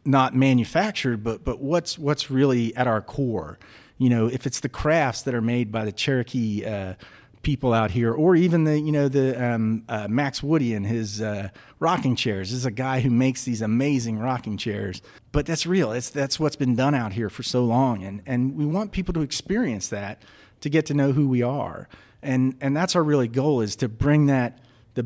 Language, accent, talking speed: English, American, 215 wpm